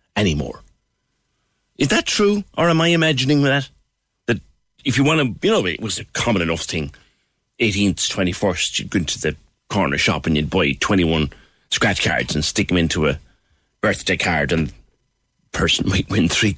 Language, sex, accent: English, male, British